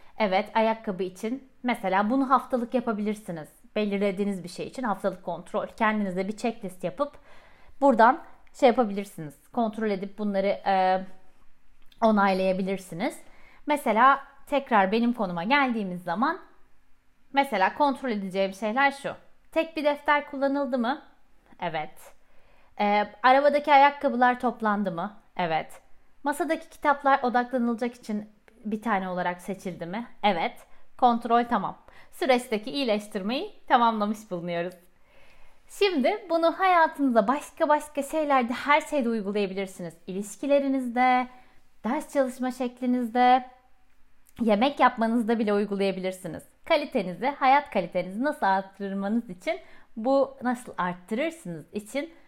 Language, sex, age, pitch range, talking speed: Turkish, female, 30-49, 200-270 Hz, 105 wpm